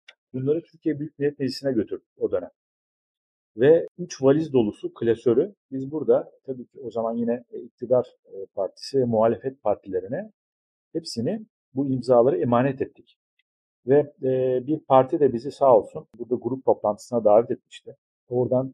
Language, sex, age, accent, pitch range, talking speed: Turkish, male, 40-59, native, 115-155 Hz, 135 wpm